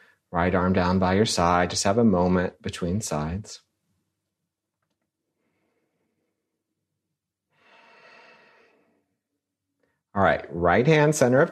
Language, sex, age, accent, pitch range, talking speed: English, male, 40-59, American, 90-110 Hz, 95 wpm